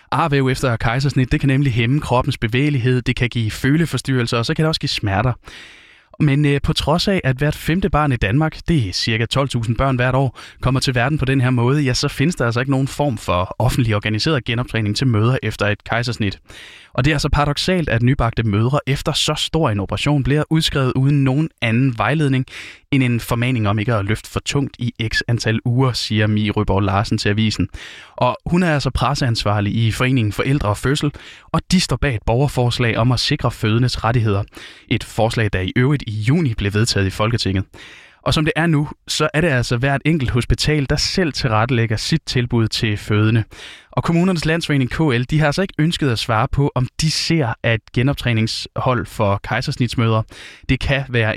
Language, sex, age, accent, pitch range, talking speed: Danish, male, 20-39, native, 110-145 Hz, 200 wpm